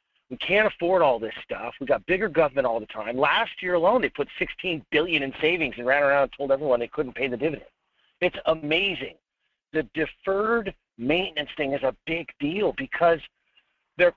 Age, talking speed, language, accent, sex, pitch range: 50-69, 190 wpm, English, American, male, 145-210 Hz